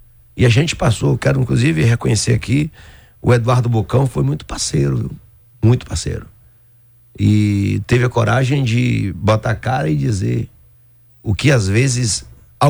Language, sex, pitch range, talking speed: Portuguese, male, 110-130 Hz, 150 wpm